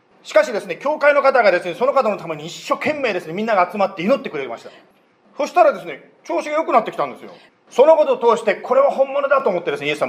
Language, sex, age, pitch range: Japanese, male, 40-59, 175-280 Hz